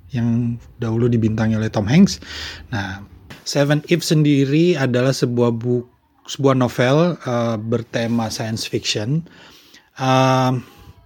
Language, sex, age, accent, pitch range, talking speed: Indonesian, male, 30-49, native, 110-130 Hz, 110 wpm